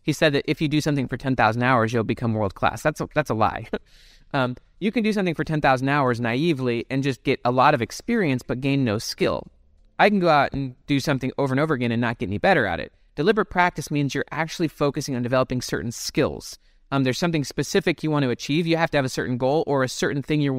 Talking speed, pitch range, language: 250 wpm, 125-155 Hz, English